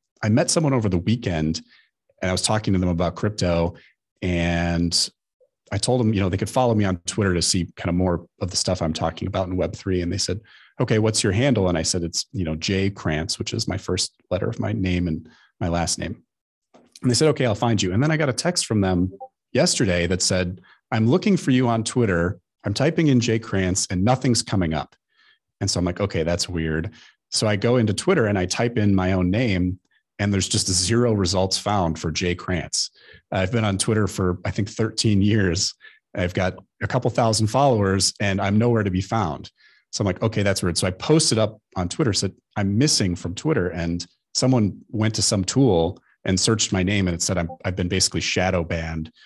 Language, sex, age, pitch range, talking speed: English, male, 30-49, 90-115 Hz, 225 wpm